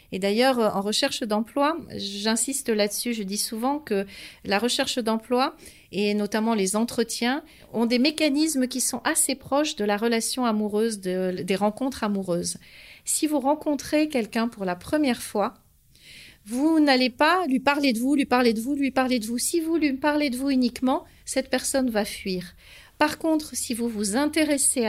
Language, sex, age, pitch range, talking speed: French, female, 40-59, 210-275 Hz, 175 wpm